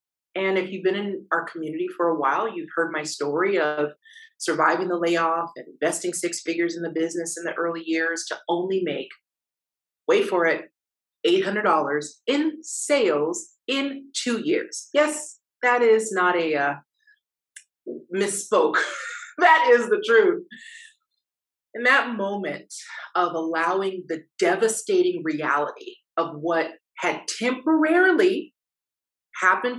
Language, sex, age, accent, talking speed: English, female, 30-49, American, 130 wpm